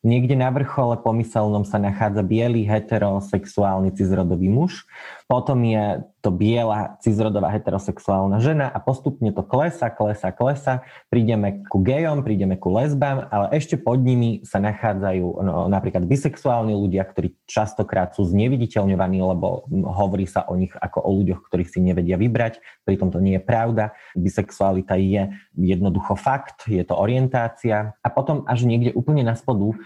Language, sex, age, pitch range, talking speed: Slovak, male, 20-39, 95-115 Hz, 150 wpm